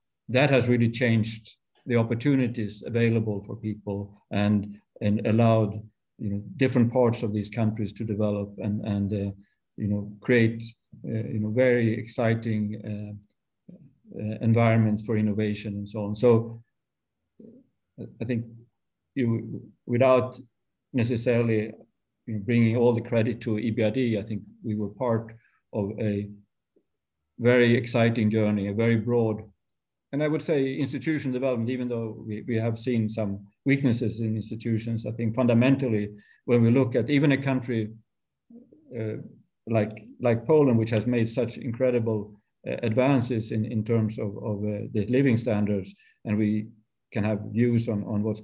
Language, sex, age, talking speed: English, male, 50-69, 145 wpm